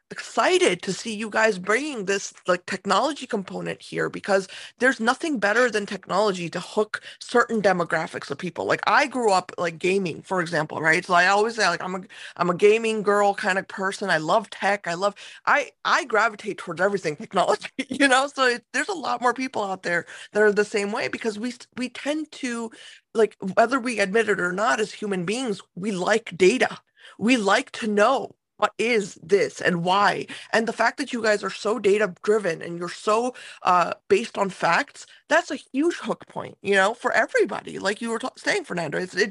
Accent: American